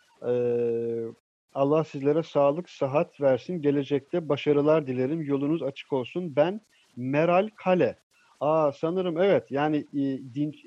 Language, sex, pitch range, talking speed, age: Turkish, male, 125-160 Hz, 120 wpm, 50-69